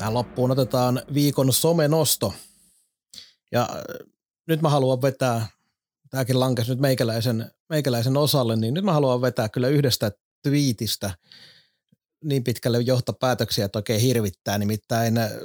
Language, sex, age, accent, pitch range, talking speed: Finnish, male, 30-49, native, 120-155 Hz, 120 wpm